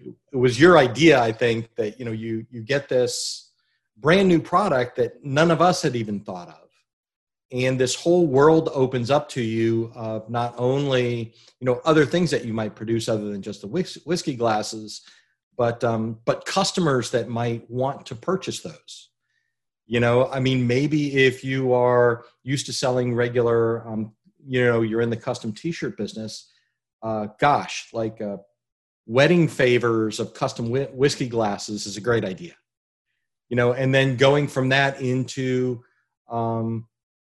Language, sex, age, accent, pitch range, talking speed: English, male, 40-59, American, 115-140 Hz, 165 wpm